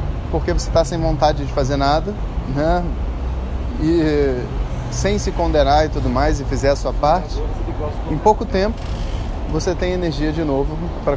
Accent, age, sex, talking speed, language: Brazilian, 20-39, male, 160 wpm, Portuguese